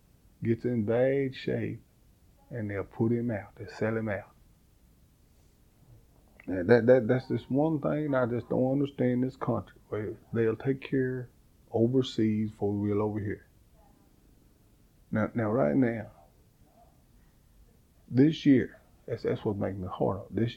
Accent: American